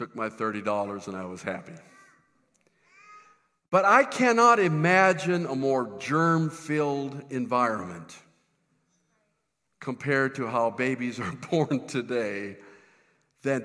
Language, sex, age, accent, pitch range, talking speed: English, male, 50-69, American, 110-150 Hz, 100 wpm